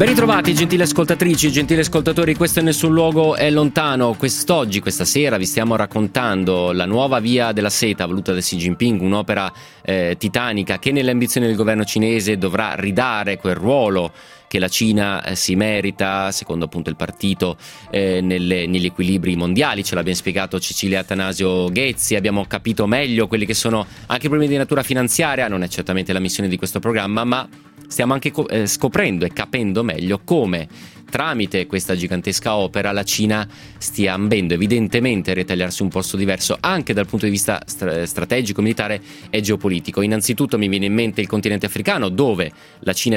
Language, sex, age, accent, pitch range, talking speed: Italian, male, 30-49, native, 95-120 Hz, 170 wpm